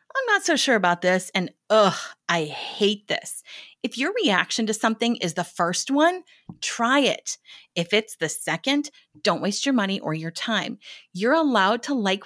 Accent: American